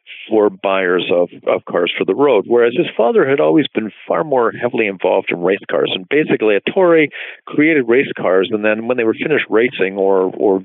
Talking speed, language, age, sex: 210 wpm, English, 50-69, male